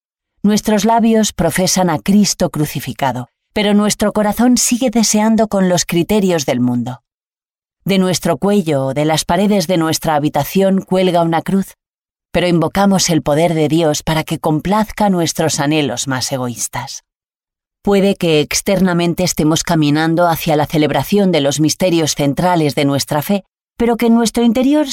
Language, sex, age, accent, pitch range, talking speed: Spanish, female, 30-49, Spanish, 150-205 Hz, 150 wpm